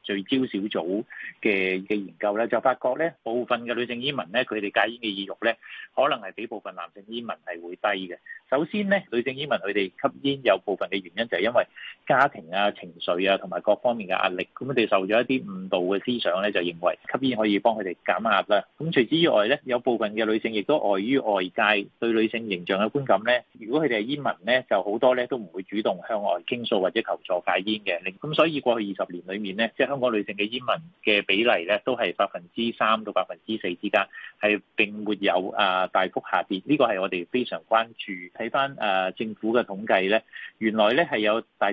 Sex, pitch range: male, 100-120 Hz